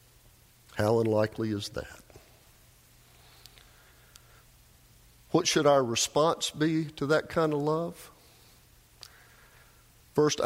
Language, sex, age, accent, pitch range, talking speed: English, male, 50-69, American, 110-145 Hz, 85 wpm